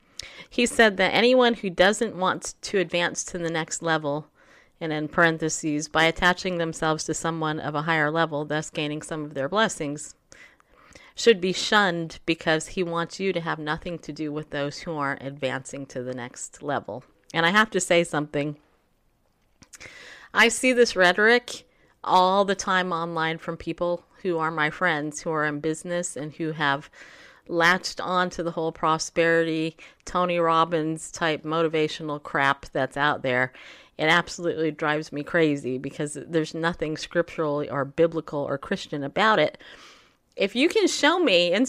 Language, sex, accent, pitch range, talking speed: English, female, American, 155-200 Hz, 165 wpm